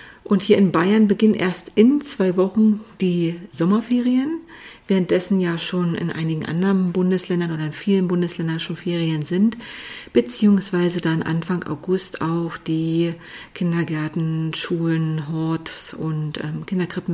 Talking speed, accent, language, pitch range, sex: 125 wpm, German, German, 170-205 Hz, female